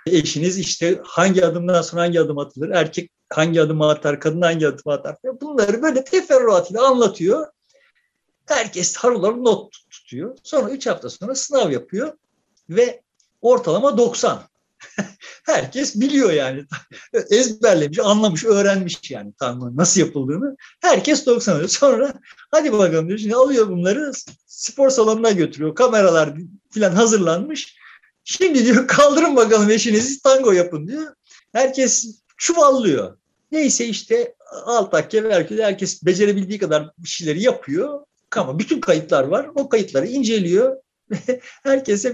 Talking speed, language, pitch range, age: 125 wpm, Turkish, 180-270 Hz, 50-69